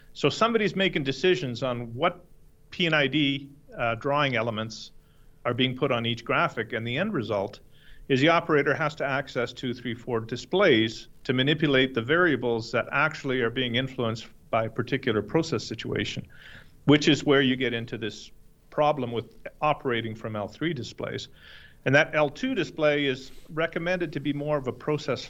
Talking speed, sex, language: 170 wpm, male, English